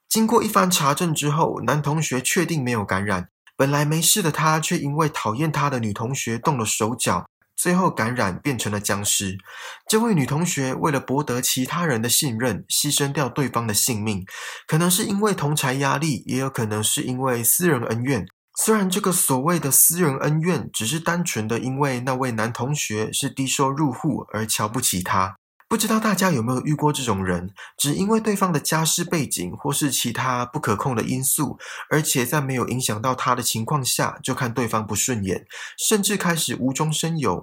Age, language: 20-39, Chinese